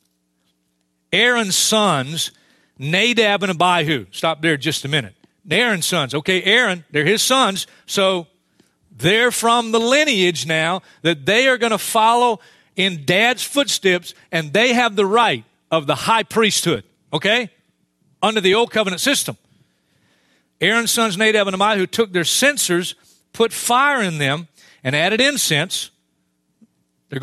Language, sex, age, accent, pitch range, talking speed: English, male, 40-59, American, 145-225 Hz, 140 wpm